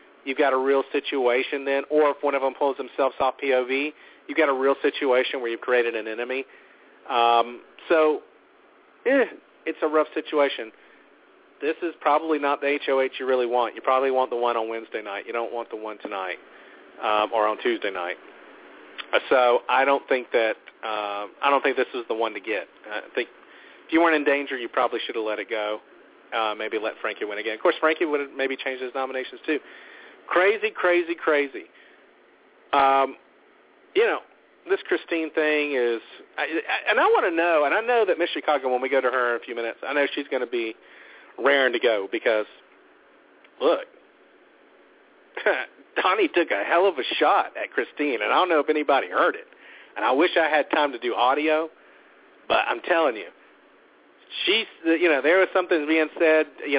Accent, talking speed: American, 195 wpm